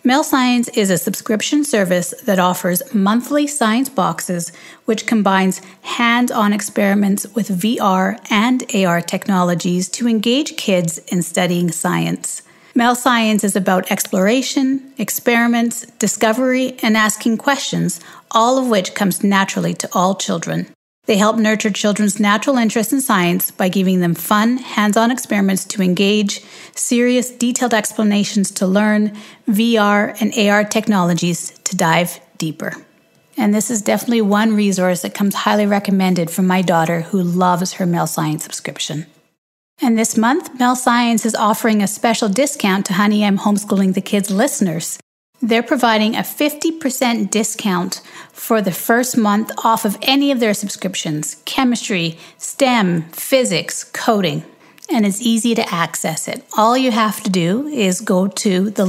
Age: 40-59